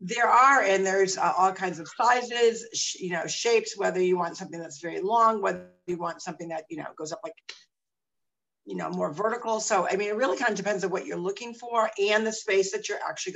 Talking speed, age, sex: 240 wpm, 50-69, female